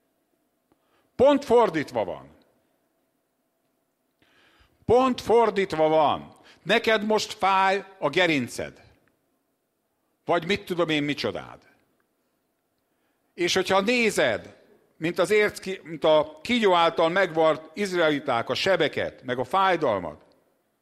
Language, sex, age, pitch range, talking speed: English, male, 50-69, 155-215 Hz, 100 wpm